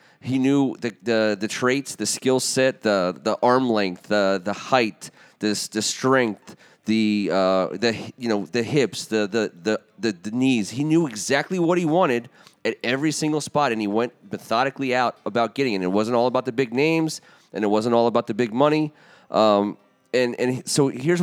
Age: 30-49